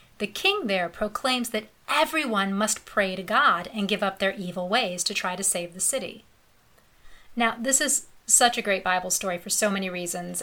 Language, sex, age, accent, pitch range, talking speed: English, female, 30-49, American, 190-245 Hz, 195 wpm